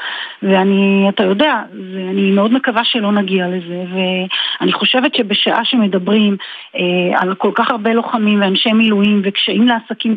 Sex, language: female, Hebrew